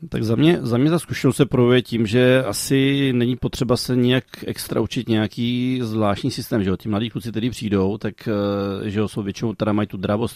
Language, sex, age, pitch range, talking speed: Czech, male, 40-59, 105-115 Hz, 185 wpm